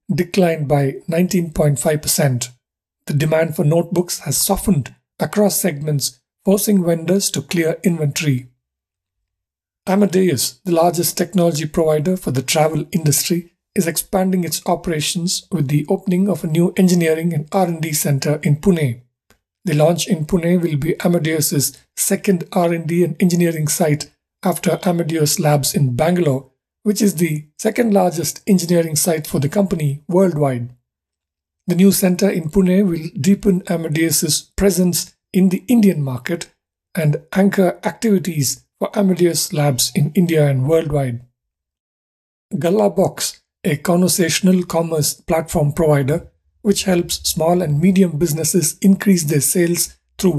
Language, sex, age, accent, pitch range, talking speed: English, male, 50-69, Indian, 150-185 Hz, 130 wpm